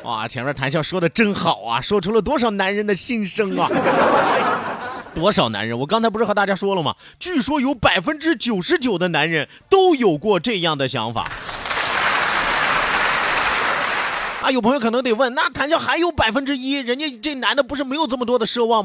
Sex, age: male, 30-49